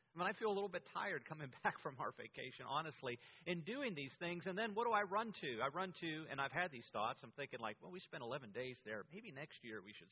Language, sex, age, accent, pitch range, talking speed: English, male, 40-59, American, 125-180 Hz, 280 wpm